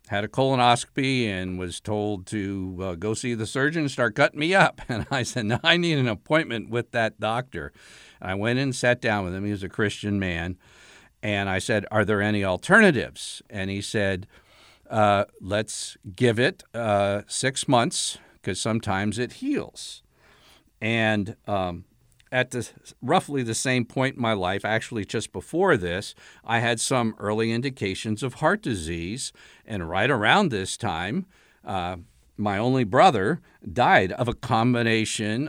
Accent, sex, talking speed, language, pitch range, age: American, male, 160 wpm, English, 105-130 Hz, 50-69